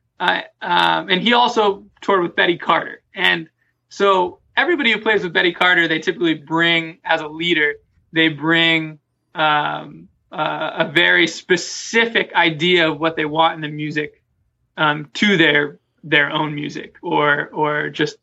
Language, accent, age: English, American, 20-39